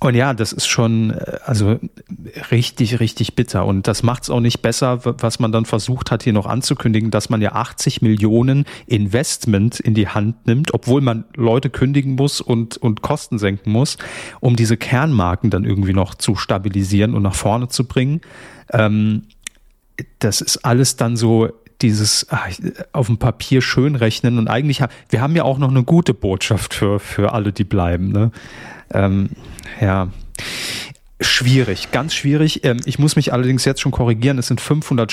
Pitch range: 110-135 Hz